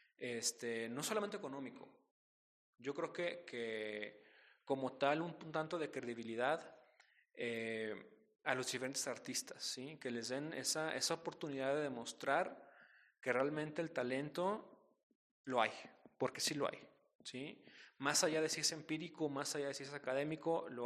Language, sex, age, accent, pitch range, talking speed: Spanish, male, 30-49, Mexican, 125-160 Hz, 150 wpm